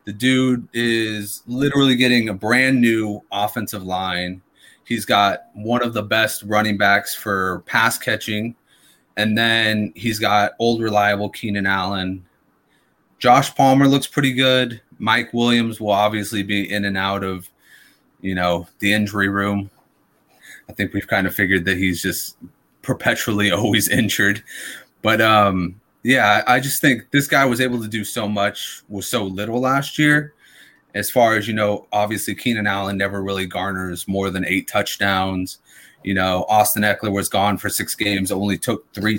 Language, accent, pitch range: English, American, 100-125 Hz